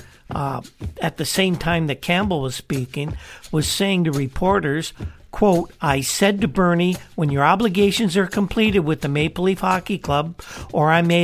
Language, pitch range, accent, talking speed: English, 145-185 Hz, American, 170 wpm